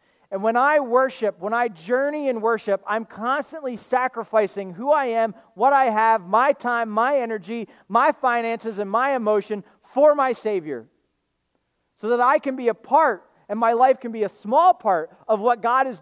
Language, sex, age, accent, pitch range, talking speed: English, male, 40-59, American, 210-265 Hz, 185 wpm